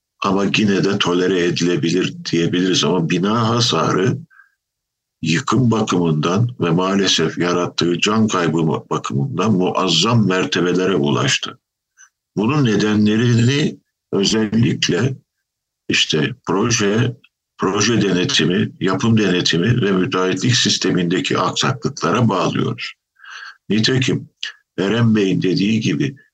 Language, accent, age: Turkish, native, 60-79